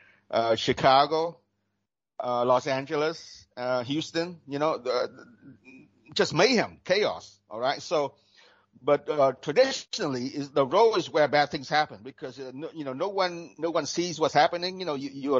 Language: English